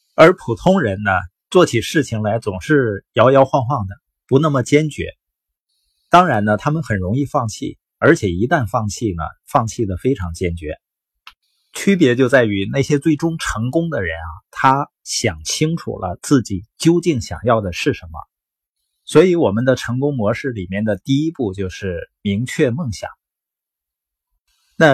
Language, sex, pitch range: Chinese, male, 95-145 Hz